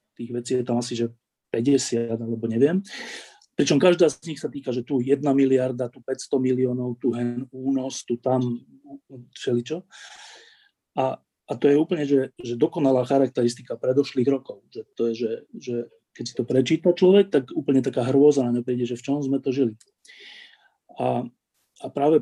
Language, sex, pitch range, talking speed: Slovak, male, 125-145 Hz, 175 wpm